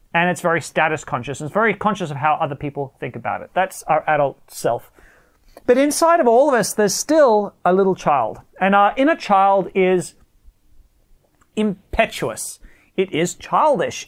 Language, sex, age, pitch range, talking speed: English, male, 30-49, 170-225 Hz, 165 wpm